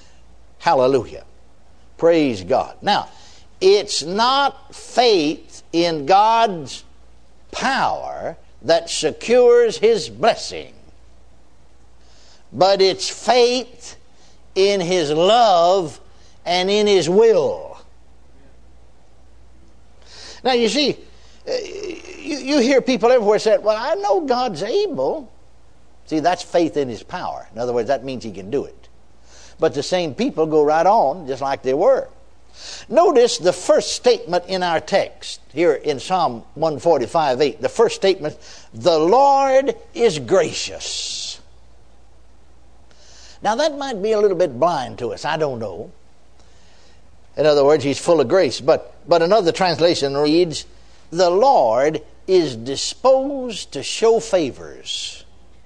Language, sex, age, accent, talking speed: English, male, 60-79, American, 125 wpm